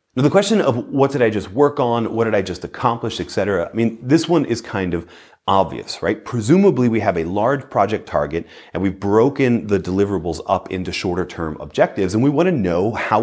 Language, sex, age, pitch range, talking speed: English, male, 30-49, 95-120 Hz, 220 wpm